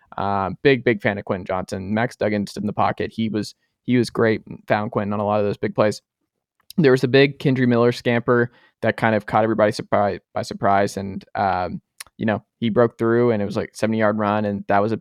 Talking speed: 250 wpm